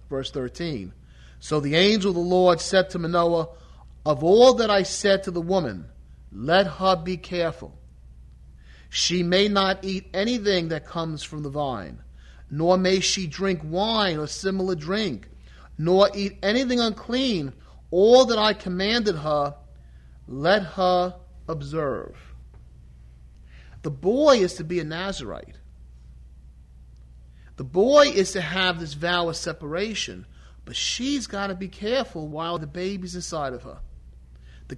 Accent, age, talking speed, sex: American, 40-59, 140 wpm, male